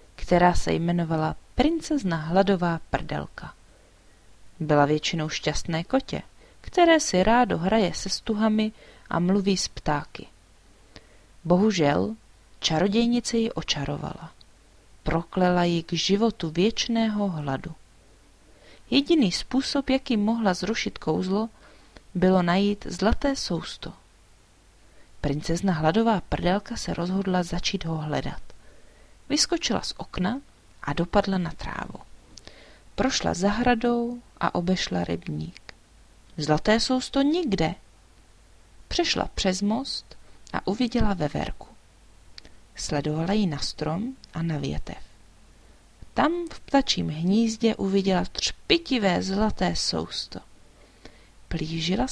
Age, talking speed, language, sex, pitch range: 30-49, 100 wpm, Czech, female, 135-220 Hz